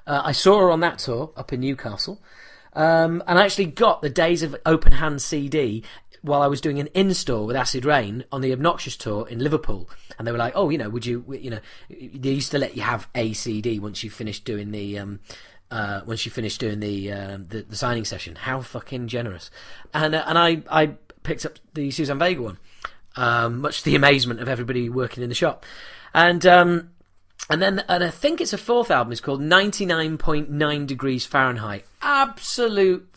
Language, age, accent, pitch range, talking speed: English, 30-49, British, 120-185 Hz, 210 wpm